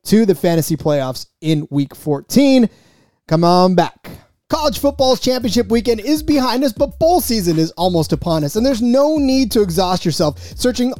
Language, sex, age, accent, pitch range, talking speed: English, male, 30-49, American, 165-240 Hz, 175 wpm